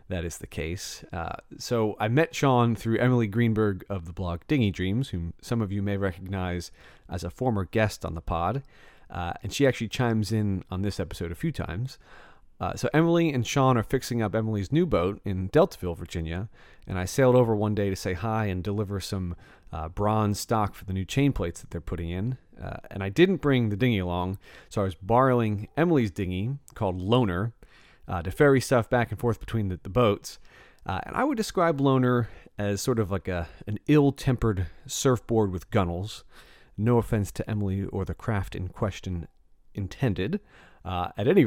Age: 30-49